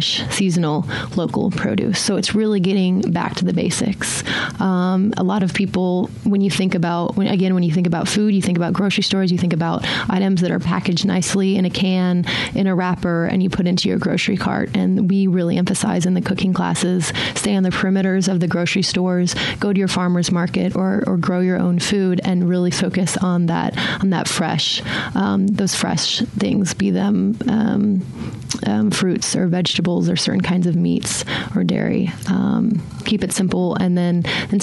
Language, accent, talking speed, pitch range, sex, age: English, American, 195 wpm, 175-195 Hz, female, 30-49